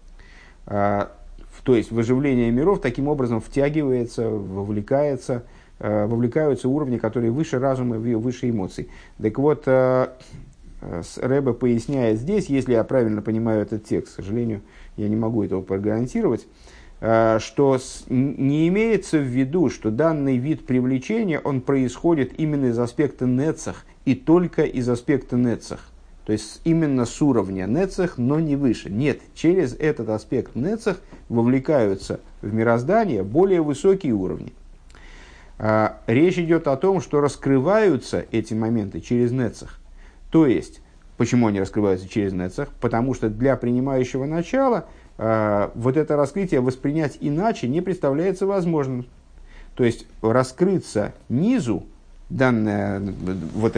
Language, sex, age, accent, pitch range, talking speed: Russian, male, 50-69, native, 110-145 Hz, 120 wpm